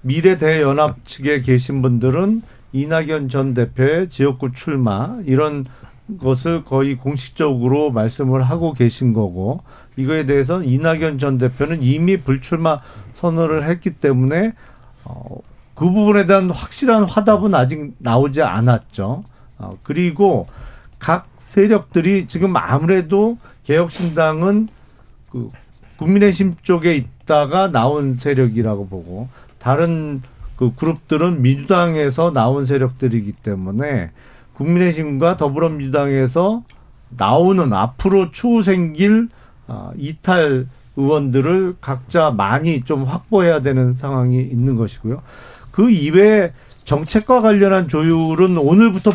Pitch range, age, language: 130-175 Hz, 40-59, Korean